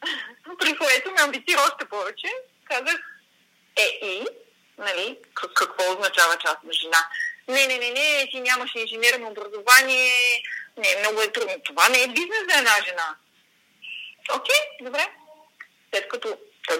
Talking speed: 140 wpm